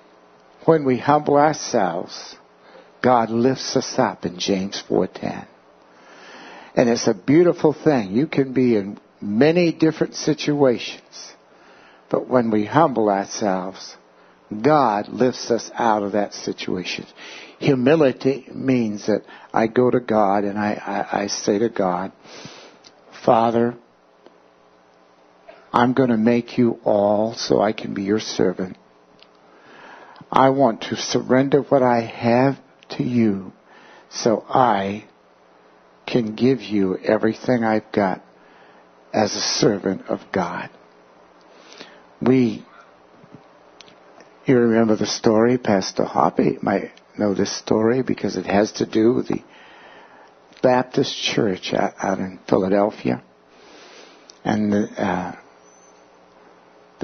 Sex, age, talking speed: male, 60-79, 115 wpm